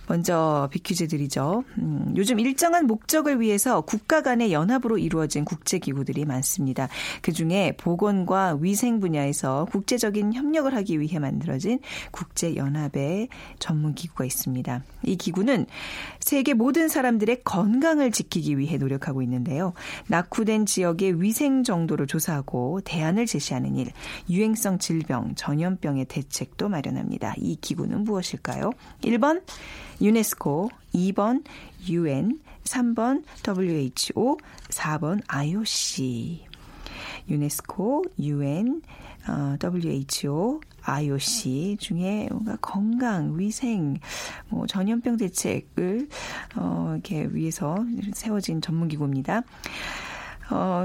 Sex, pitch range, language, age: female, 150-230 Hz, Korean, 40-59